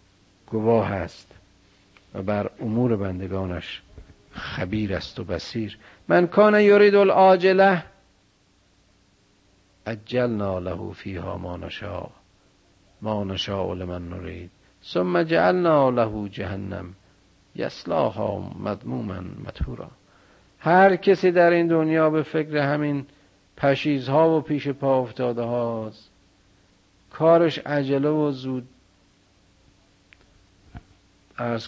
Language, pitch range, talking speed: Persian, 95-125 Hz, 95 wpm